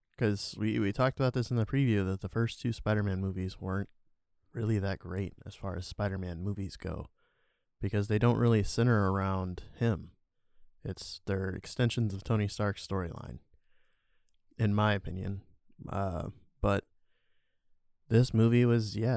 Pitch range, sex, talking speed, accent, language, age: 95-115 Hz, male, 150 wpm, American, English, 20-39